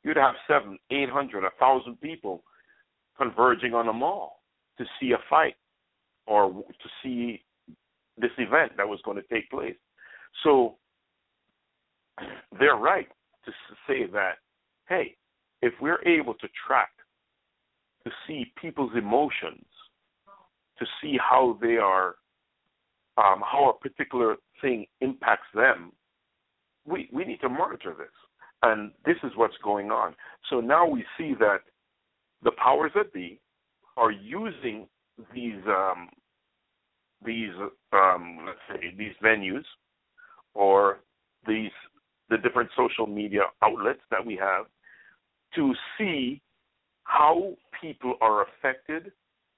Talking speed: 125 wpm